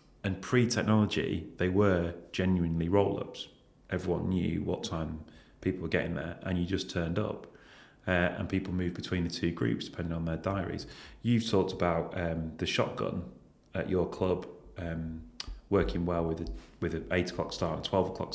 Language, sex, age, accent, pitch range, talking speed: English, male, 30-49, British, 85-100 Hz, 175 wpm